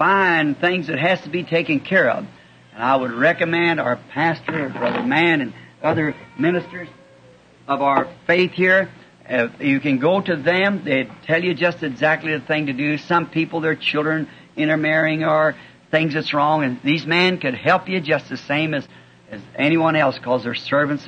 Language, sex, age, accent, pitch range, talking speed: English, male, 60-79, American, 135-170 Hz, 185 wpm